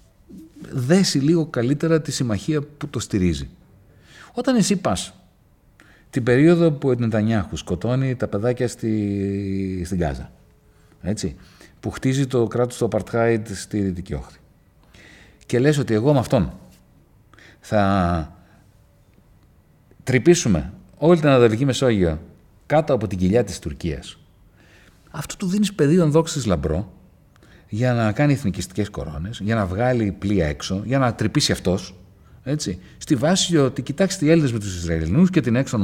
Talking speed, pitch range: 135 wpm, 95-150 Hz